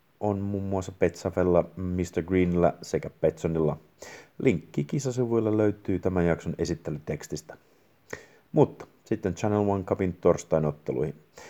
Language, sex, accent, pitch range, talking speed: Finnish, male, native, 85-105 Hz, 105 wpm